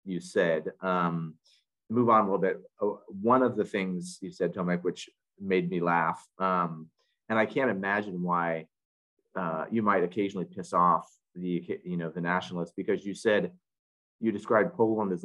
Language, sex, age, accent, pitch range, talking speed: English, male, 30-49, American, 90-110 Hz, 170 wpm